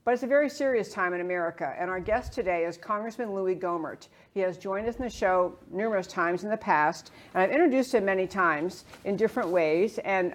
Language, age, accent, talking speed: English, 50-69, American, 220 wpm